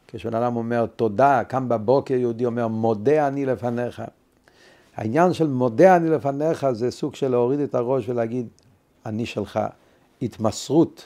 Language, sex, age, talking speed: Hebrew, male, 50-69, 135 wpm